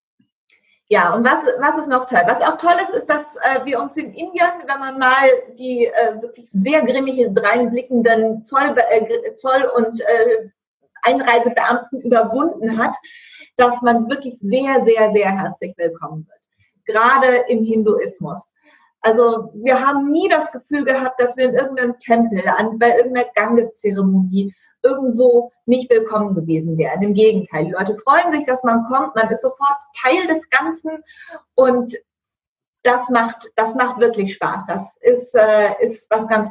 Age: 30-49